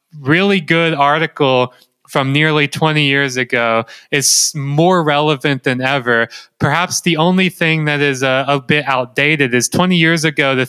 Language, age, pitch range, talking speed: English, 20-39, 125-150 Hz, 155 wpm